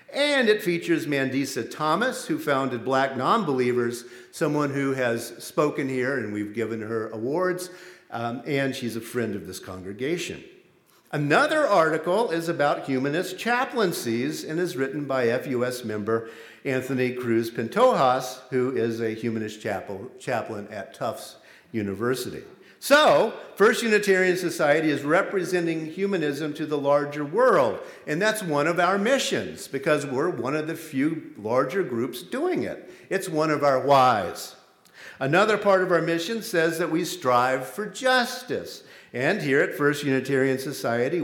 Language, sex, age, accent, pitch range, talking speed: English, male, 50-69, American, 125-185 Hz, 145 wpm